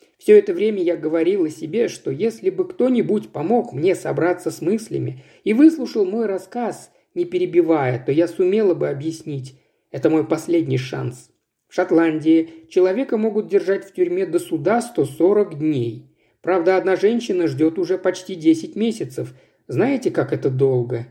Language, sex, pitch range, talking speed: Russian, male, 155-225 Hz, 155 wpm